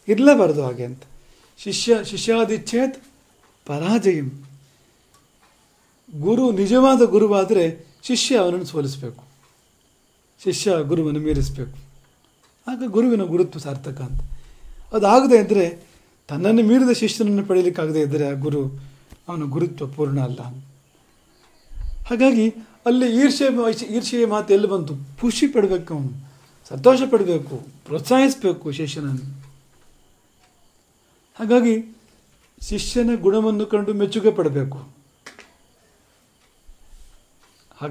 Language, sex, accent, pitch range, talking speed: English, male, Indian, 140-220 Hz, 60 wpm